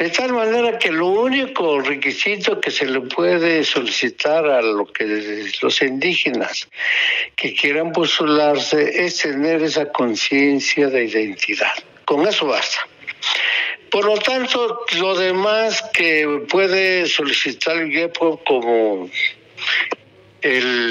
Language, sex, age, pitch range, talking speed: Spanish, male, 60-79, 145-185 Hz, 120 wpm